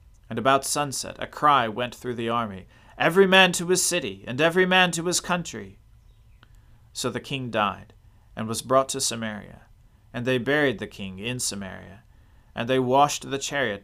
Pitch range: 105-130 Hz